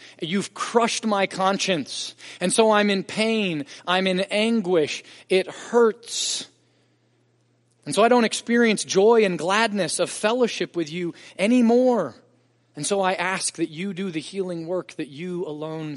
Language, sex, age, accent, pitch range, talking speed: English, male, 30-49, American, 130-185 Hz, 150 wpm